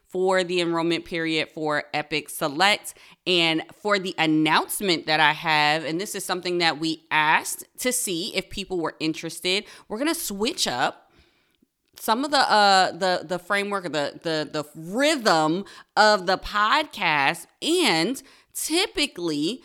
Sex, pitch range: female, 160-200 Hz